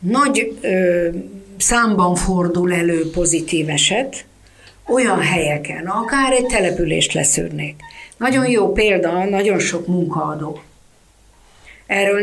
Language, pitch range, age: Hungarian, 165-230 Hz, 50-69